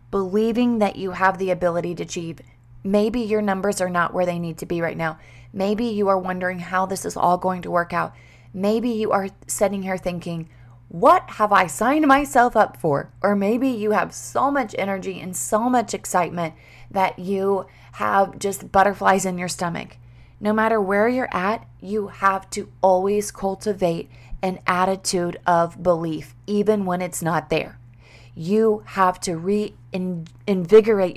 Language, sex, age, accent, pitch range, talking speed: English, female, 20-39, American, 170-205 Hz, 170 wpm